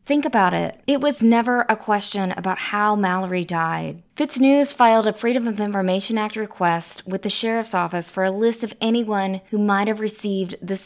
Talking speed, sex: 190 wpm, female